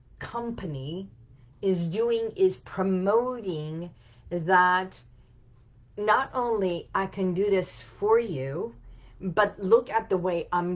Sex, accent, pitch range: female, American, 125-190 Hz